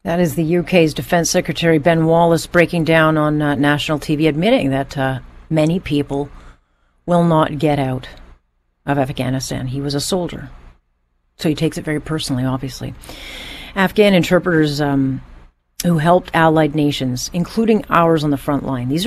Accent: American